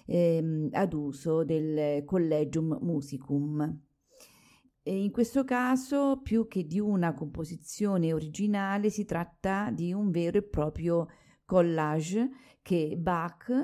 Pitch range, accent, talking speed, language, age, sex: 150-200 Hz, native, 110 wpm, Italian, 40-59, female